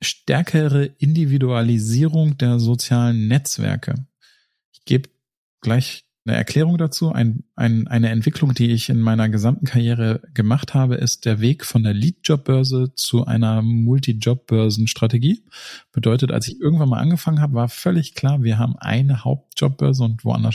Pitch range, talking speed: 115-145 Hz, 145 wpm